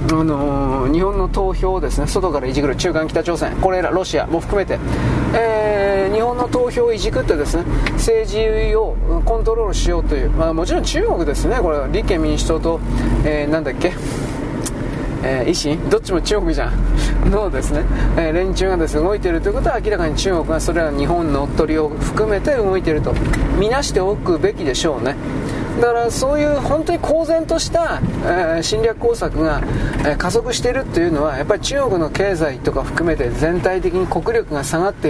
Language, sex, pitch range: Japanese, male, 150-200 Hz